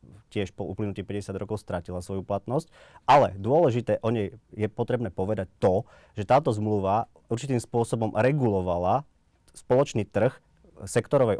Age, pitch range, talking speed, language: 30-49, 95-115 Hz, 130 wpm, Slovak